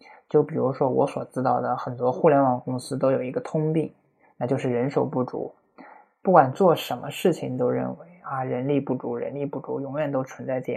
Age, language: 20-39, Chinese